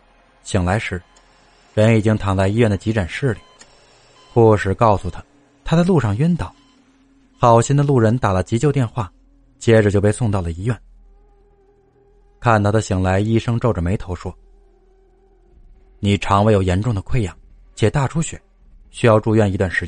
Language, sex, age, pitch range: Chinese, male, 20-39, 100-135 Hz